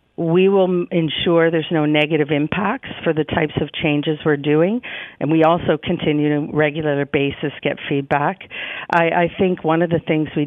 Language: English